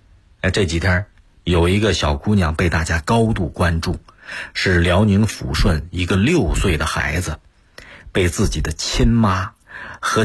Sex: male